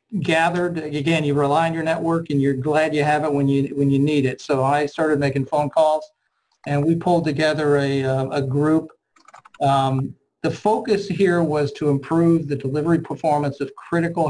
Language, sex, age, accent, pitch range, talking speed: English, male, 40-59, American, 140-170 Hz, 190 wpm